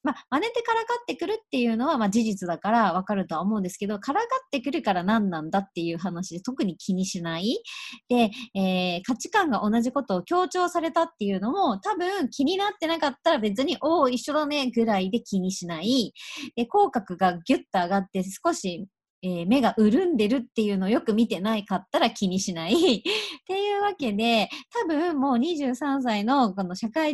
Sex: male